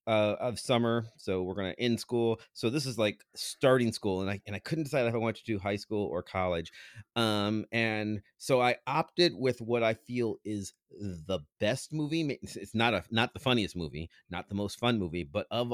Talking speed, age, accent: 215 wpm, 30-49, American